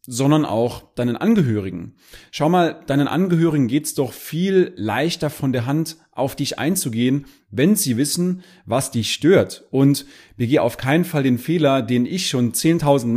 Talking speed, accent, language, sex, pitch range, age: 165 wpm, German, German, male, 115-150 Hz, 30-49